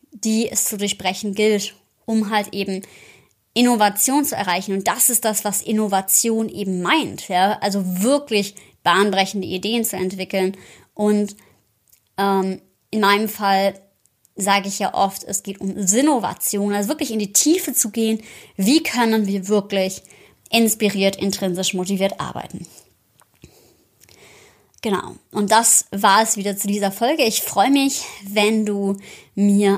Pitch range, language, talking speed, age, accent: 195-230 Hz, German, 140 wpm, 20-39, German